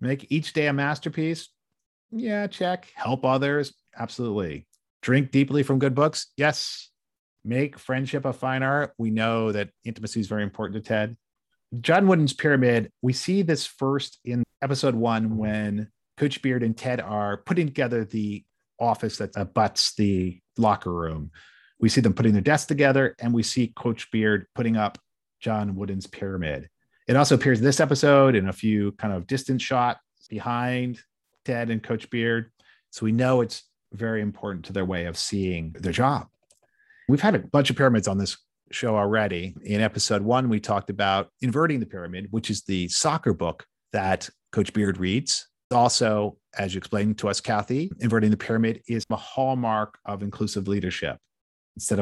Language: English